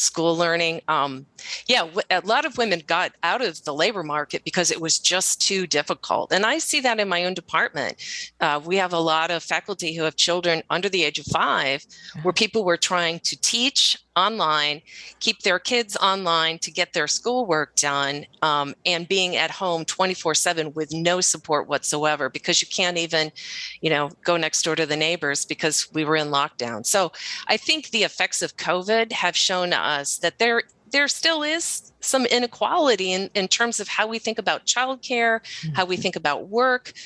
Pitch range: 160-210 Hz